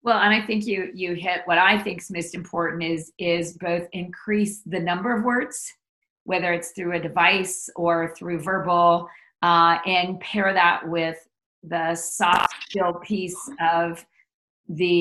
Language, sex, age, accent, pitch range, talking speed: English, female, 40-59, American, 175-210 Hz, 160 wpm